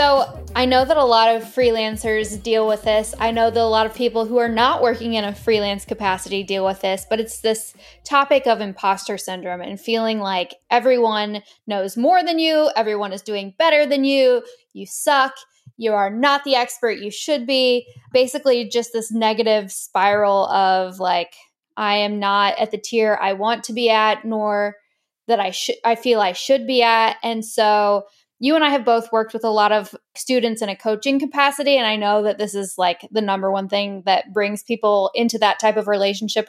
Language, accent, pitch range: English, American, 205-245 Hz